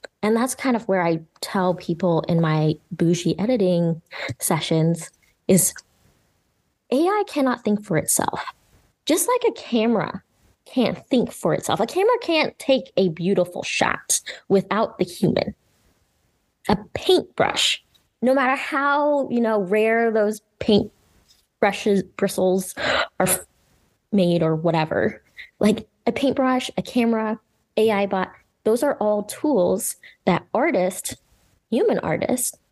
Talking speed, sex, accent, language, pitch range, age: 125 wpm, female, American, English, 175-225 Hz, 20-39